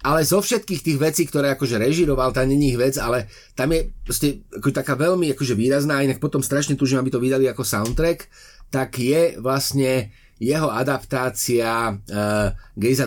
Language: Slovak